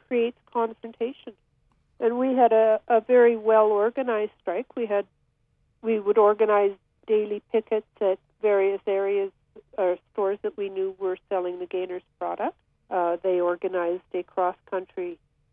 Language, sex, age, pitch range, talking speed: English, female, 50-69, 190-235 Hz, 135 wpm